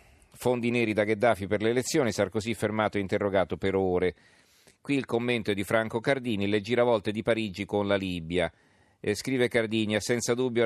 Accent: native